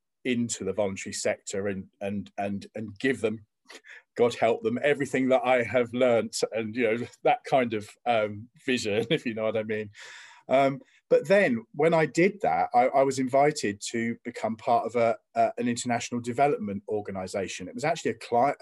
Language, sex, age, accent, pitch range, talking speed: English, male, 40-59, British, 110-140 Hz, 185 wpm